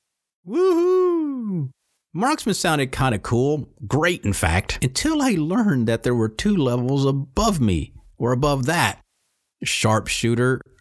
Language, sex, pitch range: English, male, 90-130 Hz